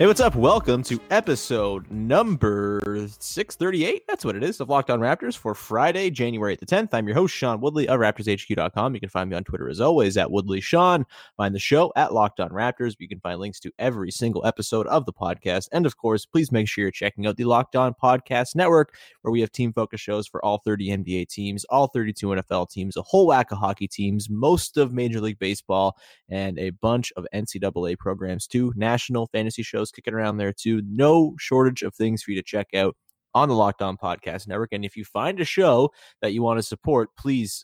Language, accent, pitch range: English, American, 100-140 Hz